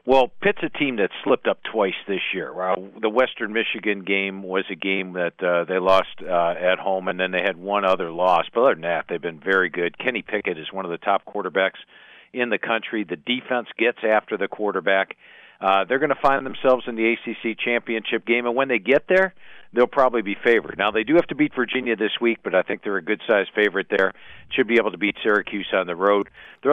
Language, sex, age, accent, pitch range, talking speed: English, male, 50-69, American, 95-120 Hz, 230 wpm